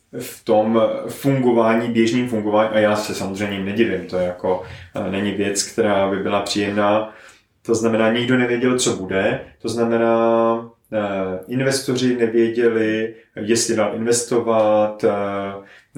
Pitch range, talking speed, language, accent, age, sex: 110-125 Hz, 120 wpm, Czech, native, 30-49, male